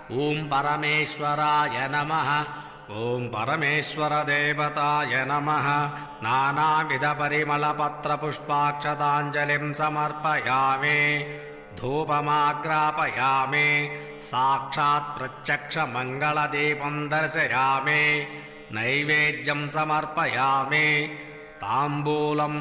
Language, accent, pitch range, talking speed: English, Indian, 145-150 Hz, 65 wpm